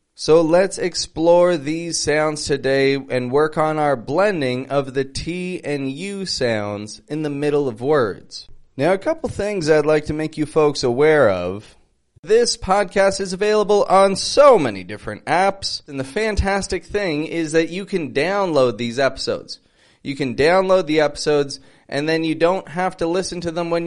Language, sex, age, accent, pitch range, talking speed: English, male, 30-49, American, 140-195 Hz, 175 wpm